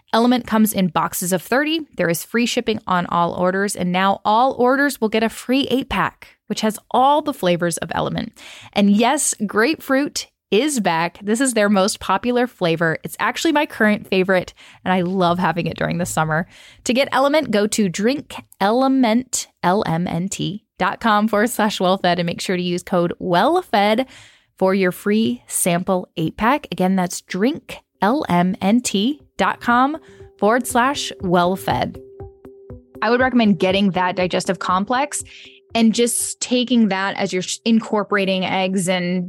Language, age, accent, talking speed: English, 10-29, American, 155 wpm